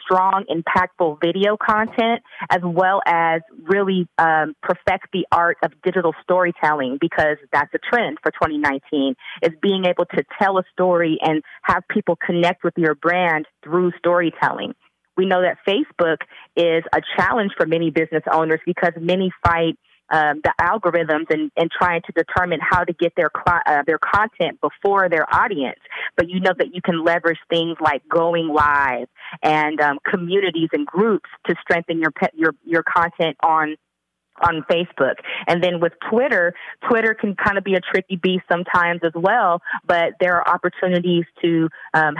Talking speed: 165 wpm